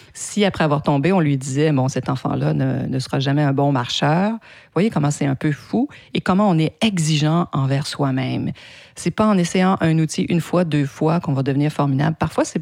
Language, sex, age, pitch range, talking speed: French, female, 40-59, 145-190 Hz, 240 wpm